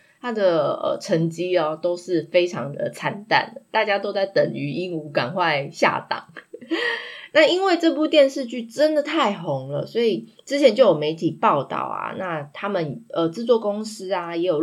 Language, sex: Chinese, female